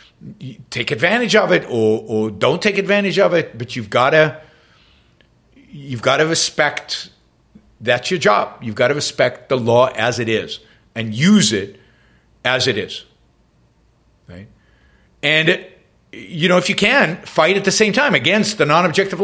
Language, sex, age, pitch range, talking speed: English, male, 60-79, 120-200 Hz, 160 wpm